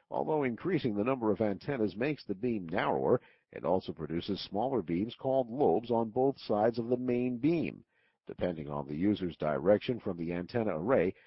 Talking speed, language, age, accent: 175 wpm, English, 50-69, American